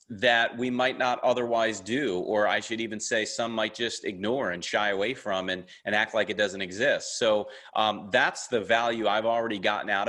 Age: 30-49